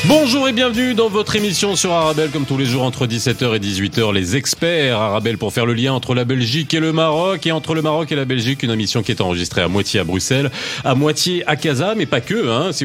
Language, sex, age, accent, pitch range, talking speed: French, male, 40-59, French, 115-165 Hz, 250 wpm